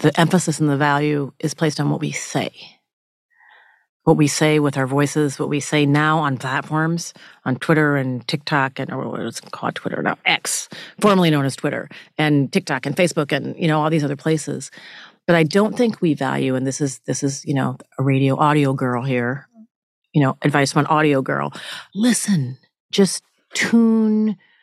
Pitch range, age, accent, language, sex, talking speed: 135-175 Hz, 40-59, American, English, female, 190 wpm